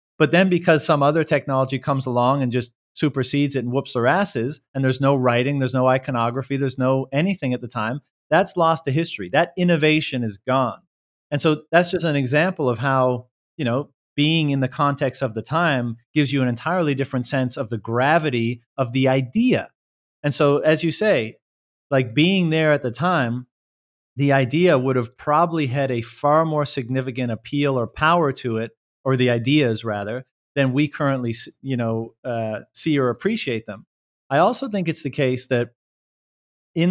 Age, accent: 30-49, American